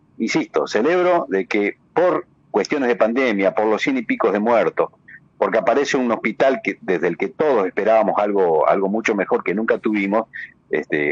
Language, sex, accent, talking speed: Spanish, male, Argentinian, 180 wpm